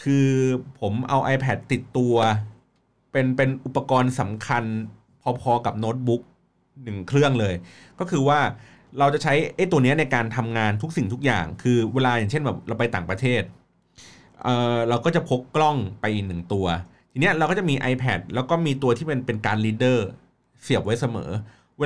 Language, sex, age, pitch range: Thai, male, 30-49, 110-140 Hz